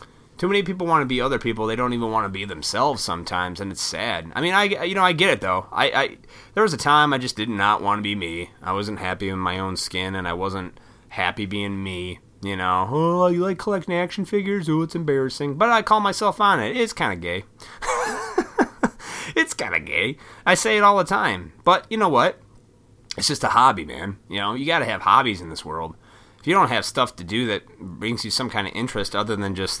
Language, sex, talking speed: English, male, 245 wpm